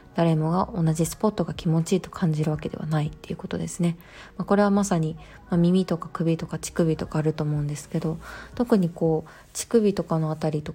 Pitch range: 155-185 Hz